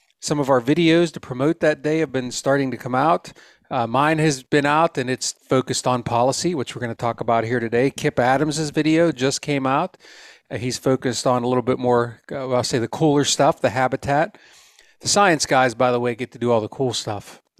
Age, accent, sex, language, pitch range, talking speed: 40-59, American, male, English, 120-145 Hz, 230 wpm